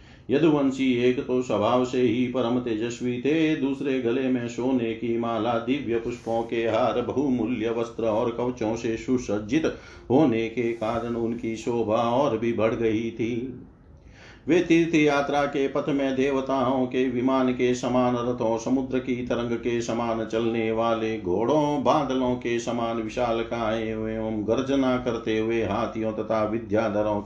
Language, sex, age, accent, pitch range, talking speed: Hindi, male, 50-69, native, 110-130 Hz, 150 wpm